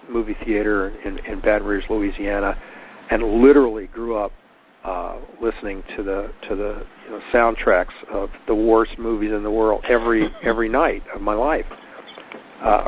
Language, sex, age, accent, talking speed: English, male, 50-69, American, 160 wpm